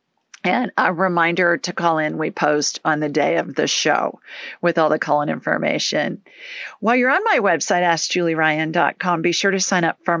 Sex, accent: female, American